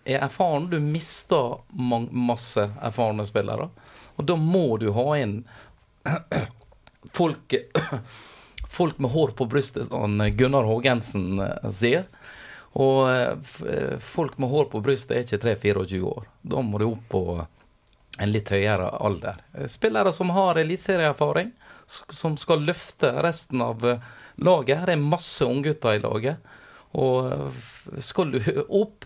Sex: male